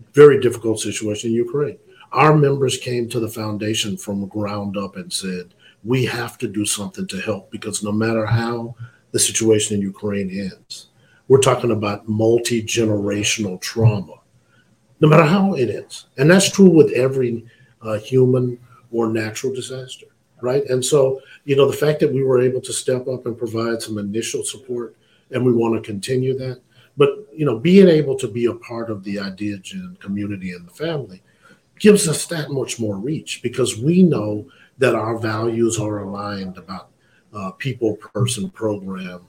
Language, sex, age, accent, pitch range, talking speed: English, male, 50-69, American, 105-130 Hz, 175 wpm